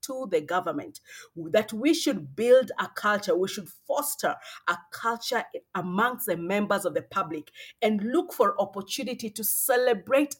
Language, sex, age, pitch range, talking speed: English, female, 40-59, 185-250 Hz, 150 wpm